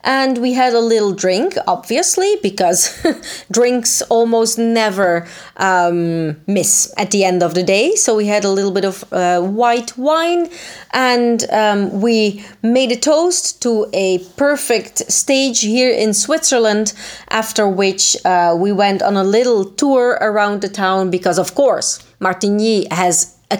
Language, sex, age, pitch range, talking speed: Italian, female, 30-49, 190-250 Hz, 155 wpm